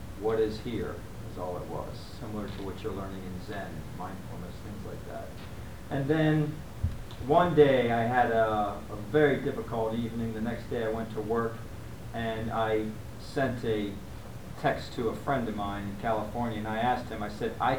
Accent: American